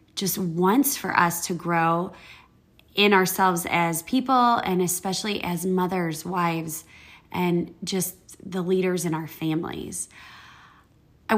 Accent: American